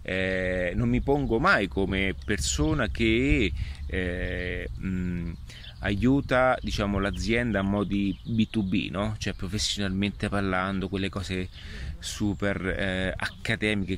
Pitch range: 90-110 Hz